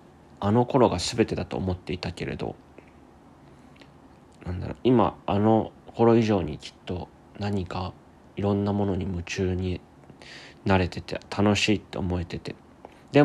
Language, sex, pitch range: Japanese, male, 90-115 Hz